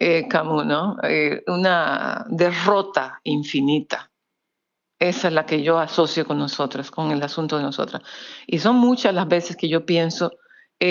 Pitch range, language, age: 160-205 Hz, Spanish, 50-69